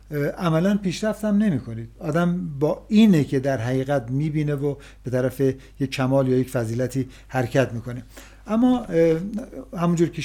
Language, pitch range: Persian, 135-190 Hz